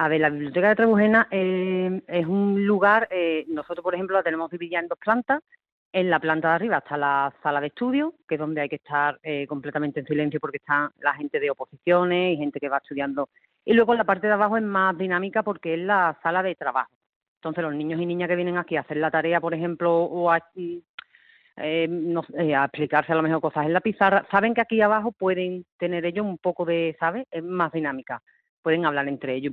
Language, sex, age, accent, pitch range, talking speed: Spanish, female, 30-49, Spanish, 150-185 Hz, 230 wpm